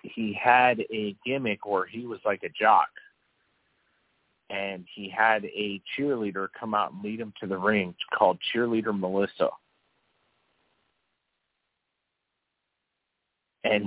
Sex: male